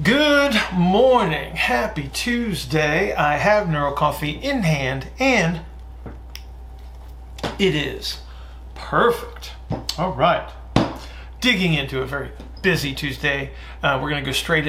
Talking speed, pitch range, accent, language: 110 wpm, 135-160 Hz, American, English